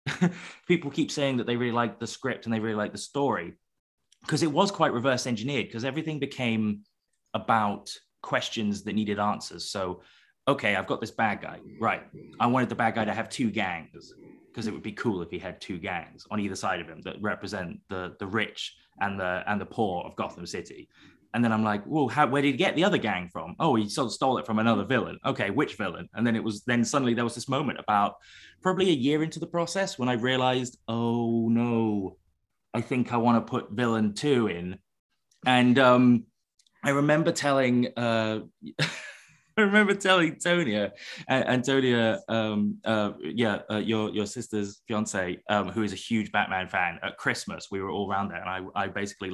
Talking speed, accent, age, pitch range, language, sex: 205 wpm, British, 20-39, 105-135 Hz, English, male